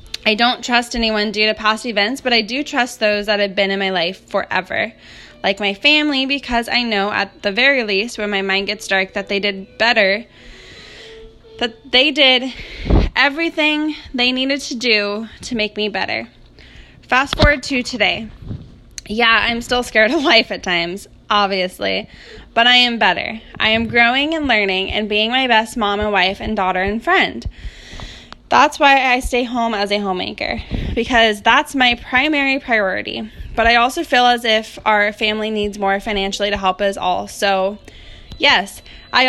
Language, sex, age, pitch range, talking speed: English, female, 10-29, 205-260 Hz, 175 wpm